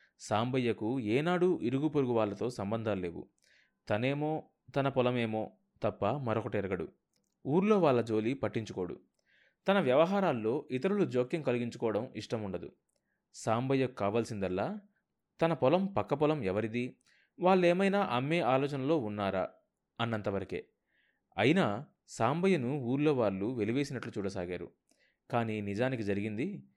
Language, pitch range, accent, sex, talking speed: Telugu, 105-145 Hz, native, male, 100 wpm